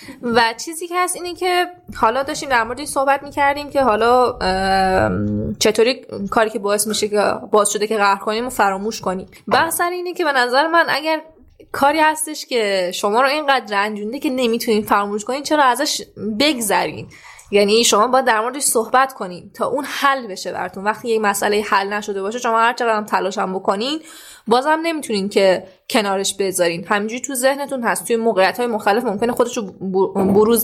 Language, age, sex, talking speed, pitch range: Persian, 10-29, female, 190 wpm, 200-260 Hz